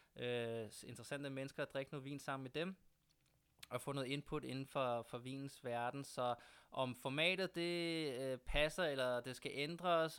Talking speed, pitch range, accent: 170 wpm, 120-145 Hz, native